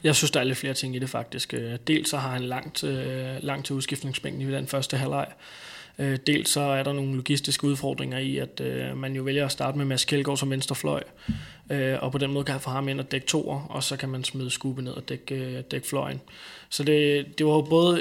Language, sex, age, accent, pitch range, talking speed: Danish, male, 20-39, native, 135-145 Hz, 235 wpm